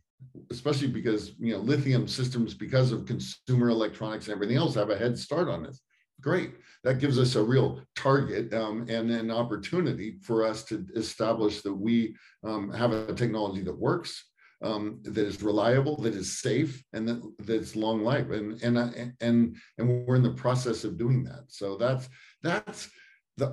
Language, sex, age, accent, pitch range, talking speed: English, male, 50-69, American, 110-130 Hz, 180 wpm